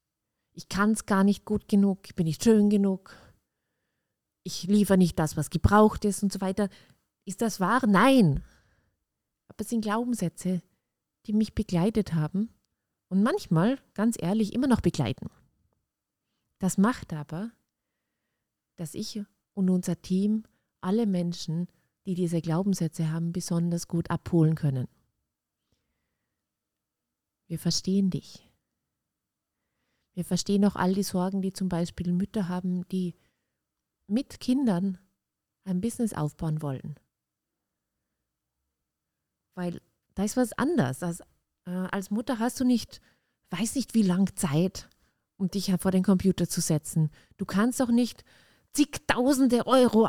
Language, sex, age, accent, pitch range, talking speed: German, female, 30-49, German, 170-215 Hz, 130 wpm